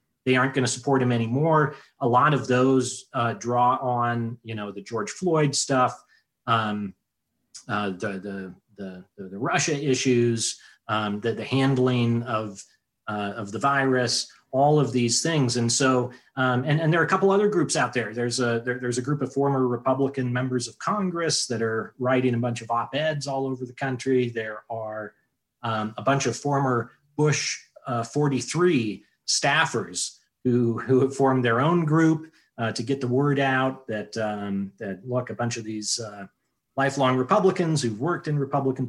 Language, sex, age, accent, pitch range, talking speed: English, male, 30-49, American, 120-150 Hz, 180 wpm